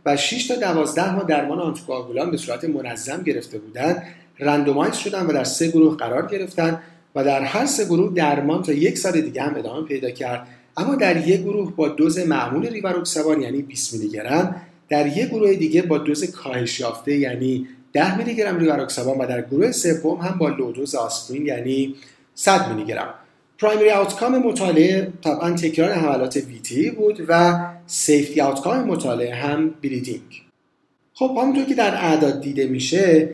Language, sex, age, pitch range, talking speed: Persian, male, 40-59, 140-185 Hz, 160 wpm